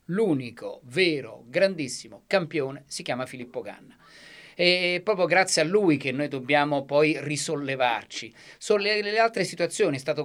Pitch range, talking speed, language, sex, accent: 135-175 Hz, 145 wpm, Italian, male, native